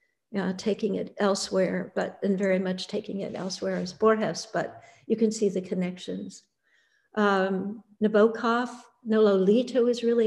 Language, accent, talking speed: English, American, 140 wpm